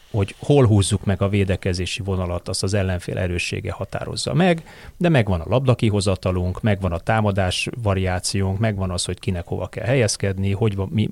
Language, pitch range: Hungarian, 95-120 Hz